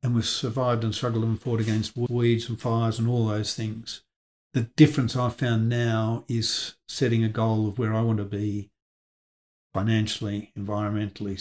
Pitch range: 110-125 Hz